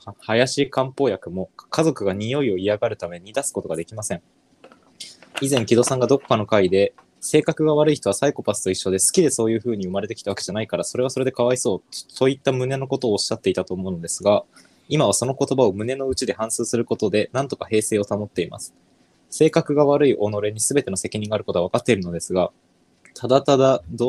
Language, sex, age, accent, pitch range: Japanese, male, 20-39, native, 105-135 Hz